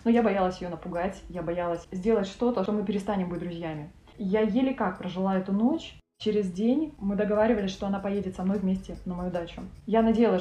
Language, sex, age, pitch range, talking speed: Russian, female, 20-39, 175-210 Hz, 200 wpm